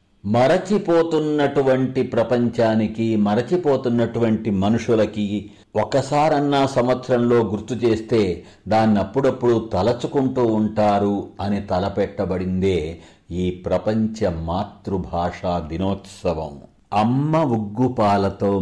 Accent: native